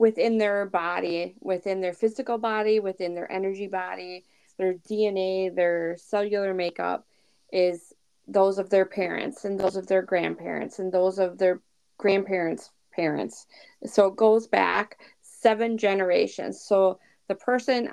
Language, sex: English, female